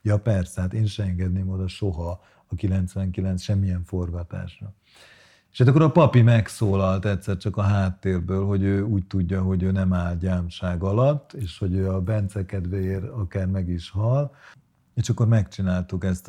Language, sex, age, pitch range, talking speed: Hungarian, male, 50-69, 95-110 Hz, 160 wpm